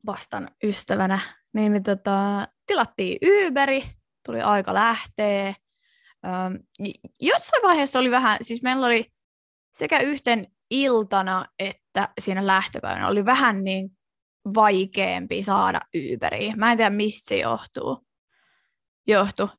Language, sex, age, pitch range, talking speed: Finnish, female, 20-39, 200-240 Hz, 105 wpm